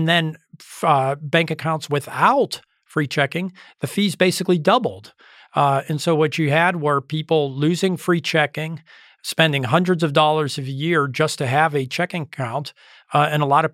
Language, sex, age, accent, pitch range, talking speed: English, male, 40-59, American, 140-160 Hz, 175 wpm